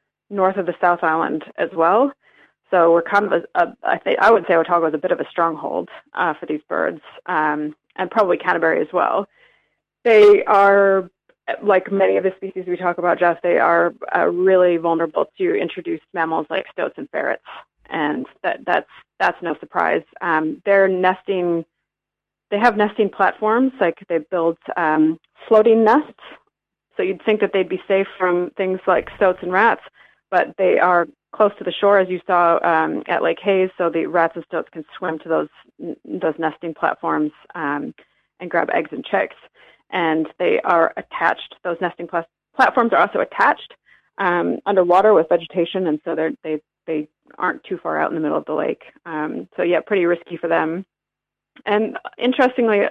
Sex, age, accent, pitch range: female, 30-49, American, 165-200 Hz